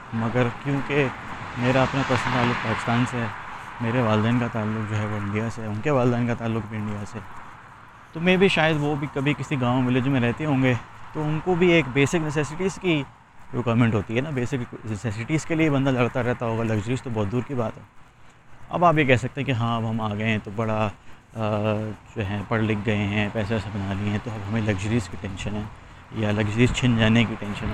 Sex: male